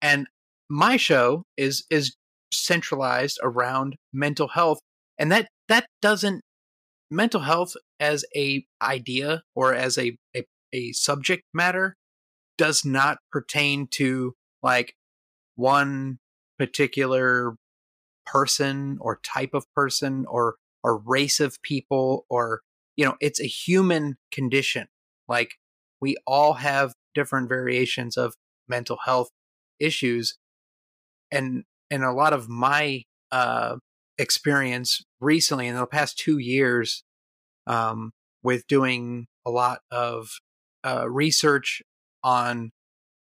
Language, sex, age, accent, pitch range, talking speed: English, male, 30-49, American, 120-145 Hz, 115 wpm